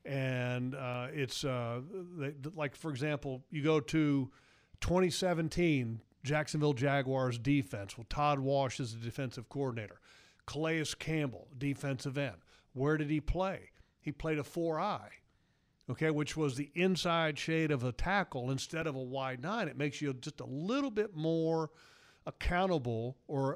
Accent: American